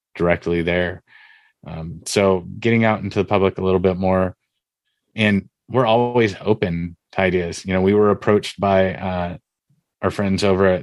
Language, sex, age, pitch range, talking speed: English, male, 30-49, 85-95 Hz, 165 wpm